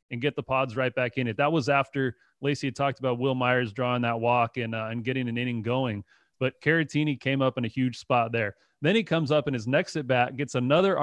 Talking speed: 250 wpm